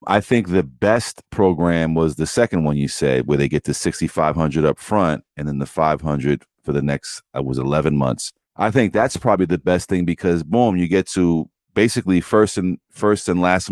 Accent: American